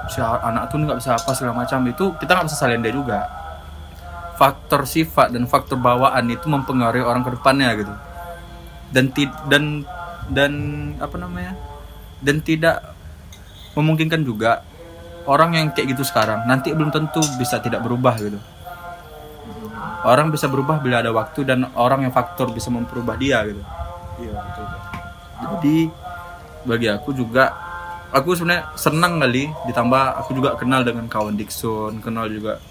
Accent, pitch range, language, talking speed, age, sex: native, 110-145 Hz, Indonesian, 140 wpm, 20-39, male